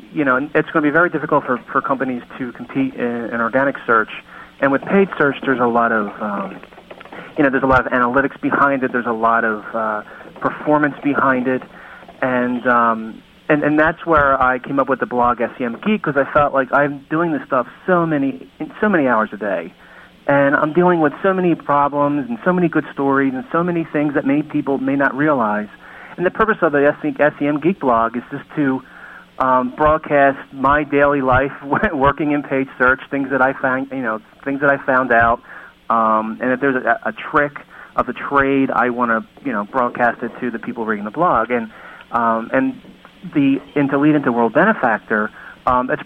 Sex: male